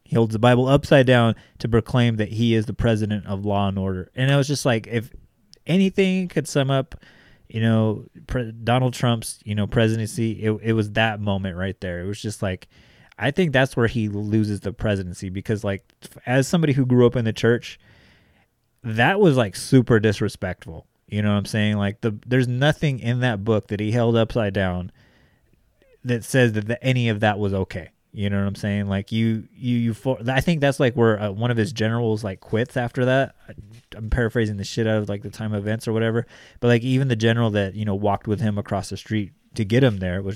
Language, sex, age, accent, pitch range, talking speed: English, male, 30-49, American, 100-120 Hz, 220 wpm